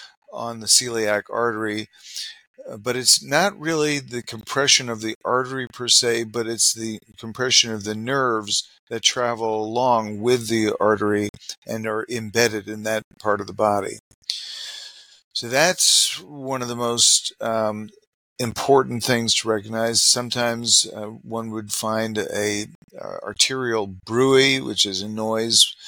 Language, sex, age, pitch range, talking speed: English, male, 40-59, 110-125 Hz, 145 wpm